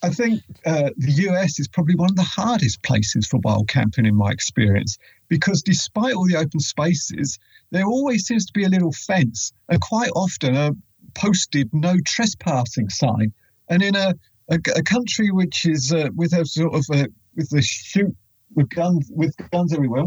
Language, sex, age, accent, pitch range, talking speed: English, male, 50-69, British, 130-185 Hz, 180 wpm